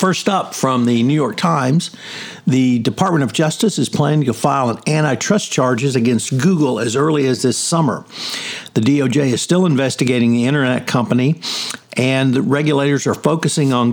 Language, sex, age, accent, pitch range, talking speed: English, male, 60-79, American, 120-145 Hz, 170 wpm